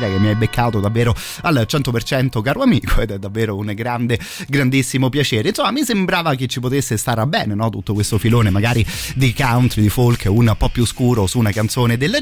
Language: Italian